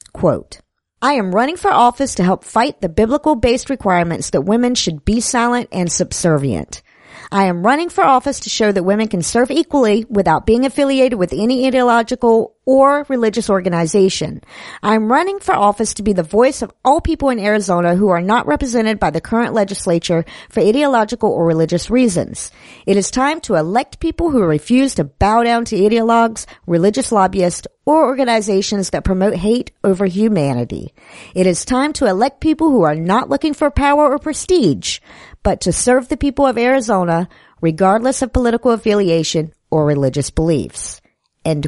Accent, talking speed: American, 165 wpm